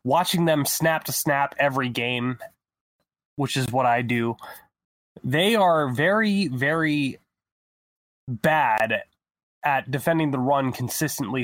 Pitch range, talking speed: 120-150 Hz, 115 wpm